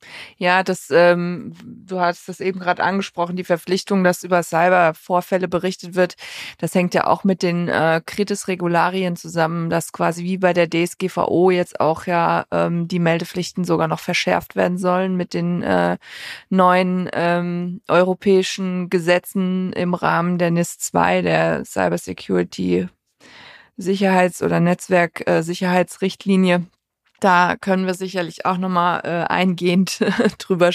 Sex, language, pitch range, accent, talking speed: female, German, 175-190 Hz, German, 130 wpm